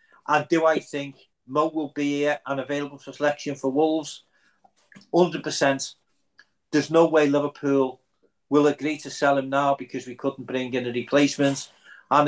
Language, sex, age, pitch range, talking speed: English, male, 50-69, 130-145 Hz, 160 wpm